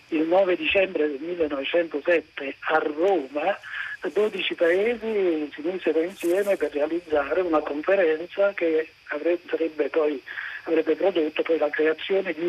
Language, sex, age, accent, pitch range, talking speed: Italian, male, 50-69, native, 155-200 Hz, 120 wpm